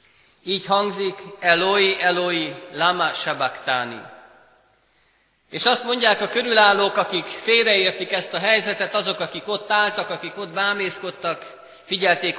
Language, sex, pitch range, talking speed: Hungarian, male, 145-190 Hz, 115 wpm